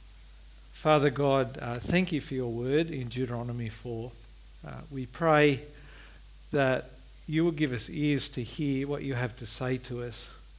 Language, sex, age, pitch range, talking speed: English, male, 50-69, 115-150 Hz, 165 wpm